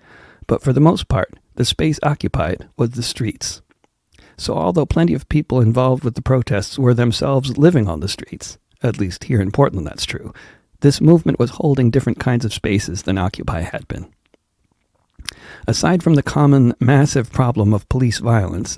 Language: English